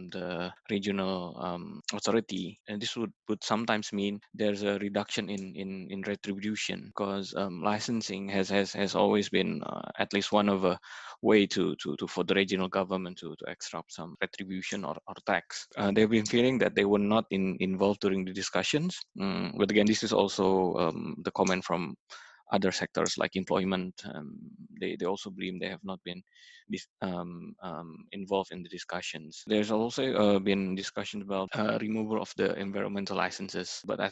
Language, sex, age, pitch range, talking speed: English, male, 20-39, 95-110 Hz, 180 wpm